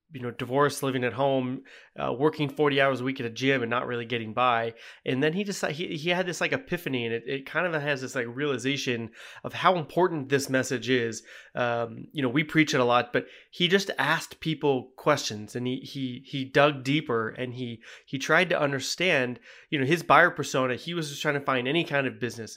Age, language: 30-49, English